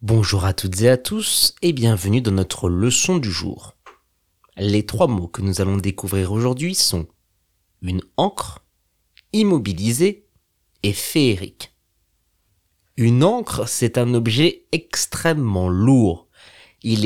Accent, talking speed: French, 135 wpm